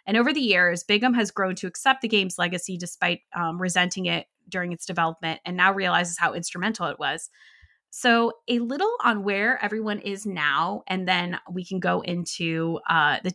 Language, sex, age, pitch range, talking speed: English, female, 20-39, 175-220 Hz, 190 wpm